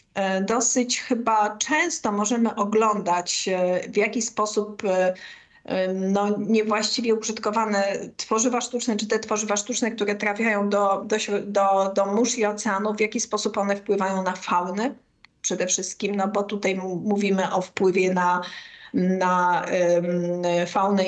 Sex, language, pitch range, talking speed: female, Polish, 195-225 Hz, 125 wpm